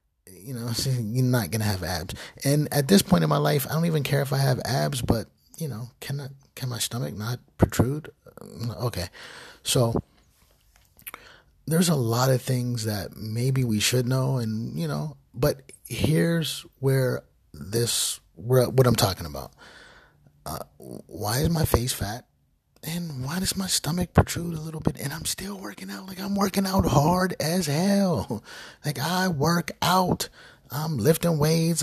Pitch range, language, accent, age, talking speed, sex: 115-160 Hz, English, American, 30-49, 170 wpm, male